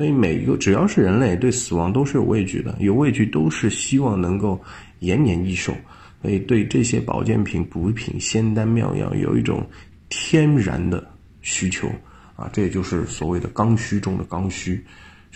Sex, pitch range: male, 90-110 Hz